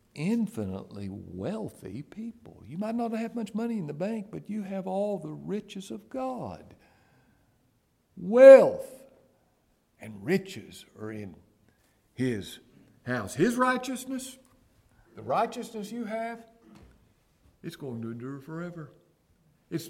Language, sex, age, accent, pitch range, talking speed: English, male, 60-79, American, 110-185 Hz, 120 wpm